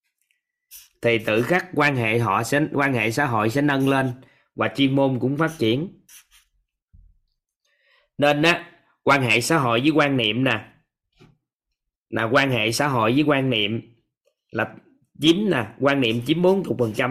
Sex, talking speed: male, 160 wpm